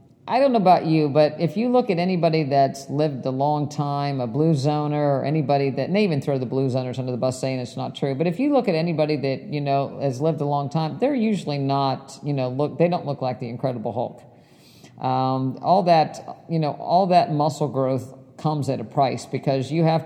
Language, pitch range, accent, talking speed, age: English, 135-165 Hz, American, 235 wpm, 50-69